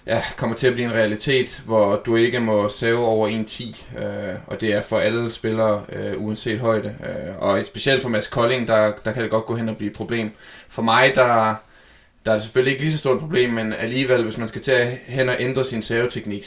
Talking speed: 250 wpm